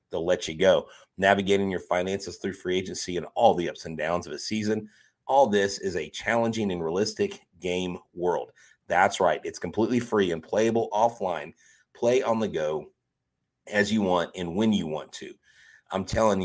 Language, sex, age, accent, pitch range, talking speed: English, male, 30-49, American, 85-105 Hz, 180 wpm